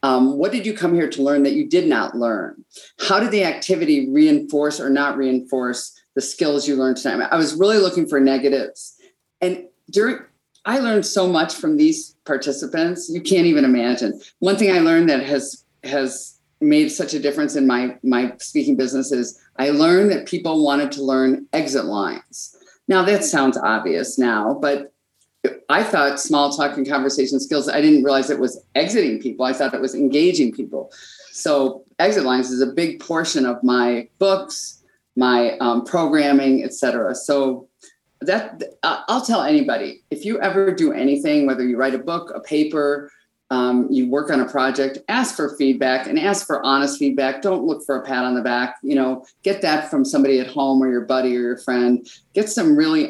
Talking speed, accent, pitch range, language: 190 wpm, American, 130-175 Hz, English